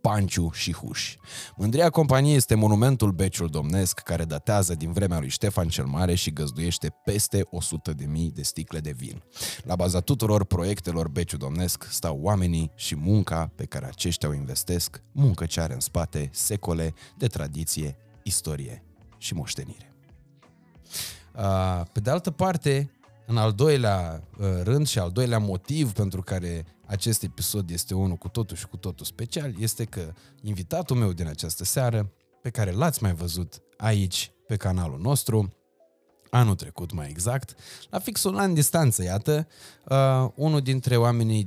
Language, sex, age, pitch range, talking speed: Romanian, male, 20-39, 85-120 Hz, 150 wpm